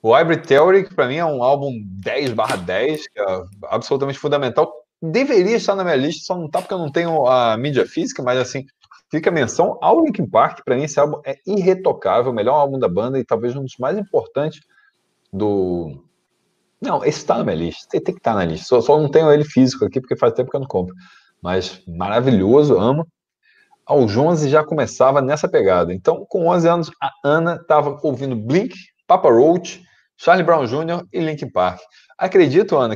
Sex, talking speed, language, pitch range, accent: male, 200 wpm, Portuguese, 120-170 Hz, Brazilian